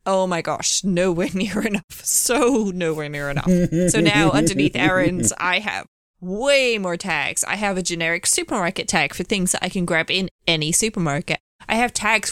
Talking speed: 180 wpm